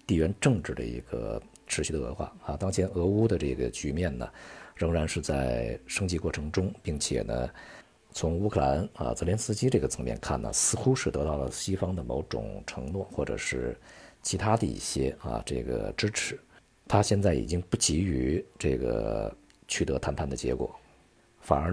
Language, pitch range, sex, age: Chinese, 65-95 Hz, male, 50-69